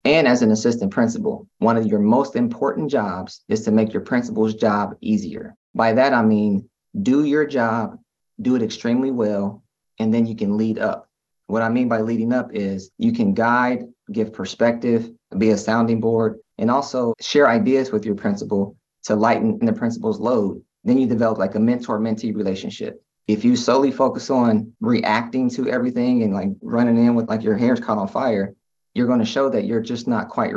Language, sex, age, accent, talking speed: English, male, 20-39, American, 190 wpm